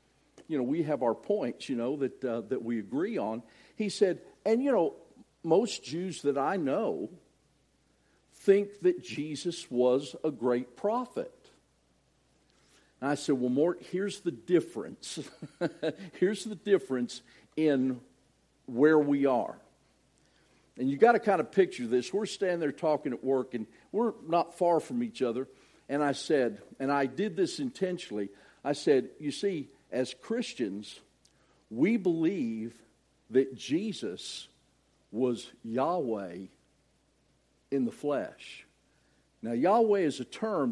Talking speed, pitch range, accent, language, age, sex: 140 wpm, 130-200 Hz, American, English, 50-69, male